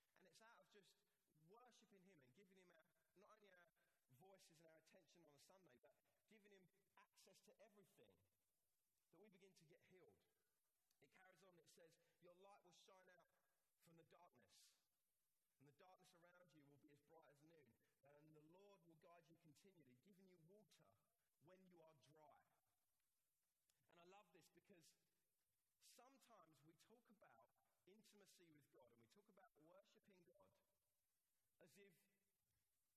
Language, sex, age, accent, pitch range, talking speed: English, male, 30-49, British, 155-200 Hz, 155 wpm